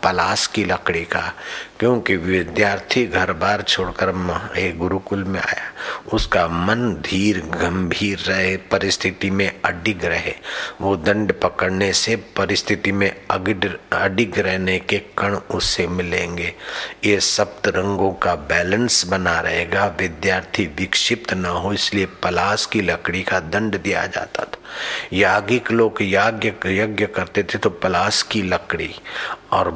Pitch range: 95-105 Hz